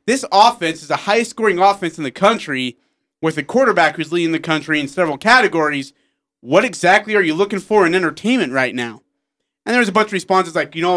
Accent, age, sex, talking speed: American, 30-49, male, 215 wpm